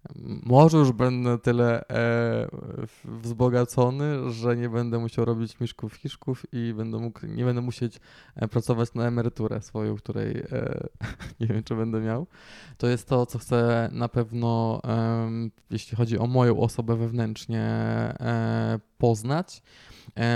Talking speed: 145 wpm